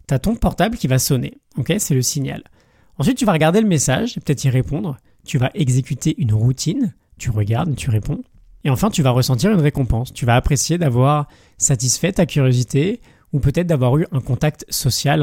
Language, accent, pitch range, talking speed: French, French, 125-160 Hz, 195 wpm